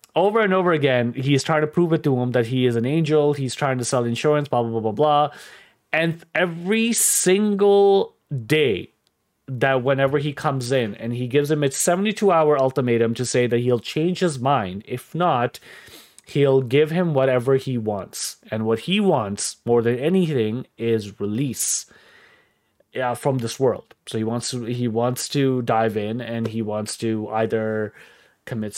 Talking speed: 175 wpm